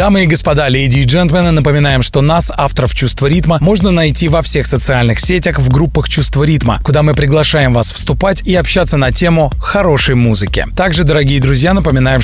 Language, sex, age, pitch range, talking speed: Russian, male, 20-39, 130-165 Hz, 180 wpm